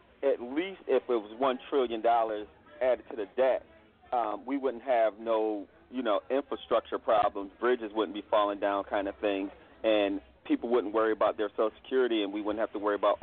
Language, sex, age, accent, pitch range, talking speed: English, male, 40-59, American, 105-145 Hz, 195 wpm